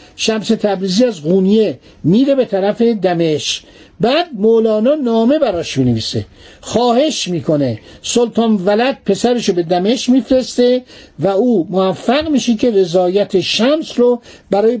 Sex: male